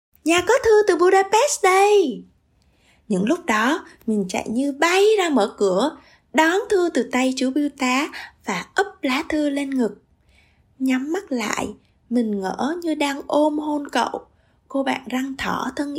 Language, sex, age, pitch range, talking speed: Vietnamese, female, 20-39, 225-300 Hz, 165 wpm